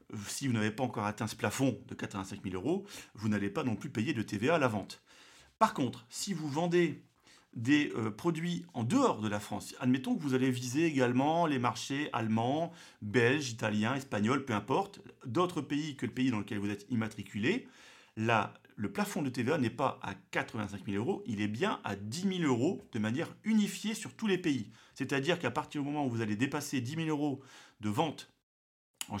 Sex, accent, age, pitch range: male, French, 40-59, 105-145 Hz